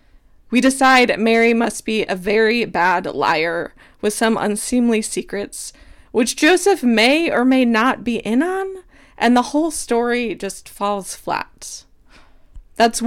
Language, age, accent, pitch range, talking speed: English, 20-39, American, 205-255 Hz, 140 wpm